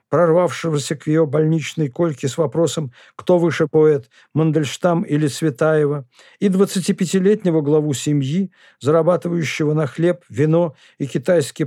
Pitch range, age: 145-175 Hz, 50-69